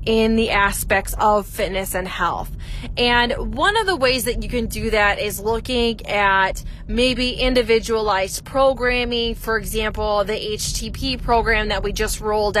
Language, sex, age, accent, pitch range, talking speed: English, female, 20-39, American, 205-250 Hz, 150 wpm